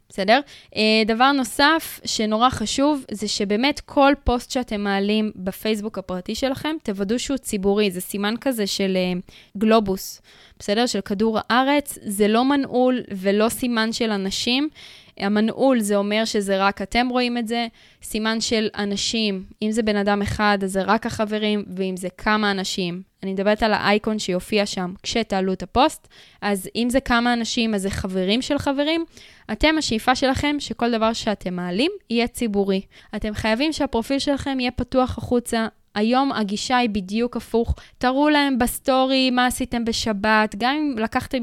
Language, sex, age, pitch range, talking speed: Hebrew, female, 10-29, 205-250 Hz, 155 wpm